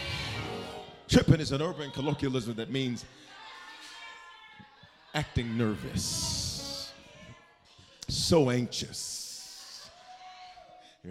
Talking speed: 65 wpm